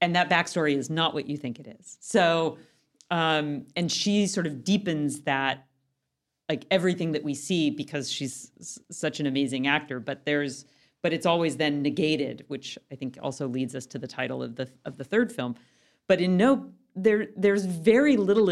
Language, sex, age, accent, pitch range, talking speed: English, female, 40-59, American, 140-175 Hz, 195 wpm